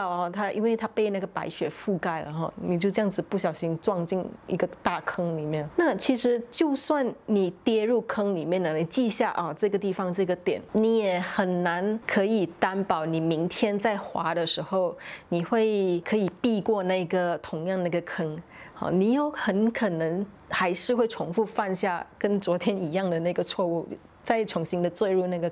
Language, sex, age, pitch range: Chinese, female, 20-39, 175-220 Hz